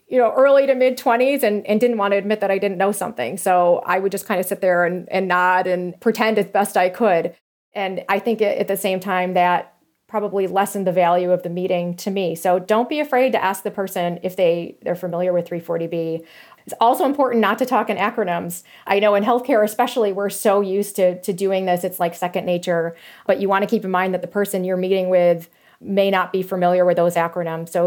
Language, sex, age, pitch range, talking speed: English, female, 30-49, 180-215 Hz, 235 wpm